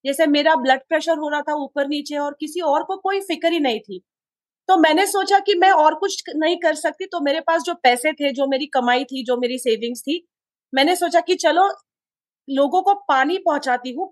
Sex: female